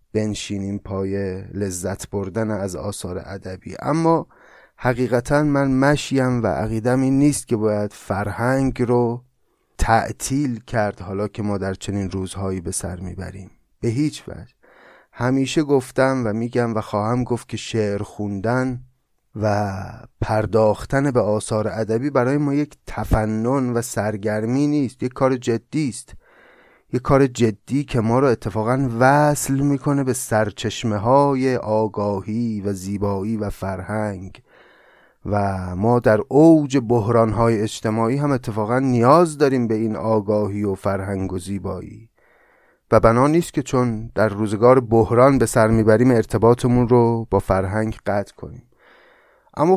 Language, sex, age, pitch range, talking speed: Persian, male, 30-49, 105-130 Hz, 135 wpm